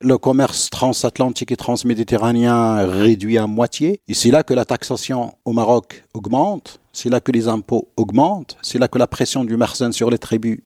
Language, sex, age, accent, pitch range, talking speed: French, male, 50-69, French, 115-135 Hz, 185 wpm